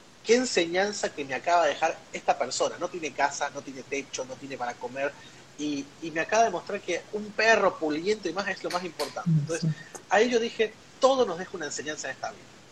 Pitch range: 150-225 Hz